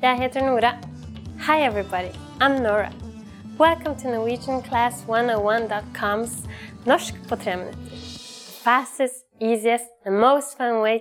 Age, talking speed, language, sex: 20-39, 95 wpm, English, female